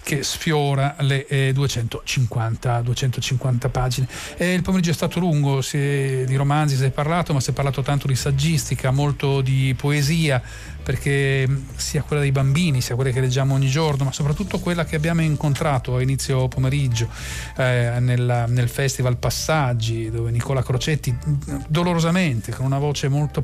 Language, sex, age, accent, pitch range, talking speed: Italian, male, 40-59, native, 125-145 Hz, 160 wpm